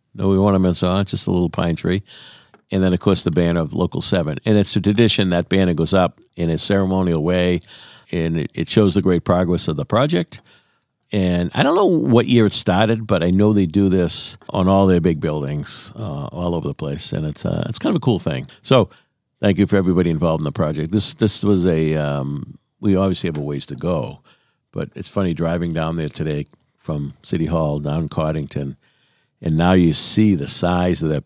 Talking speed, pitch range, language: 225 wpm, 80-100 Hz, English